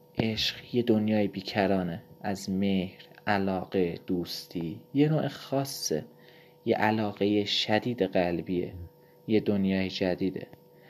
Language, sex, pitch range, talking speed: Persian, male, 95-120 Hz, 100 wpm